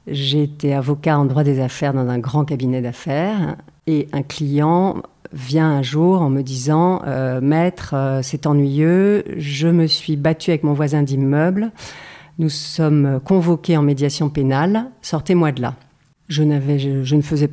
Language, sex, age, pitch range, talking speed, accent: French, female, 50-69, 140-165 Hz, 165 wpm, French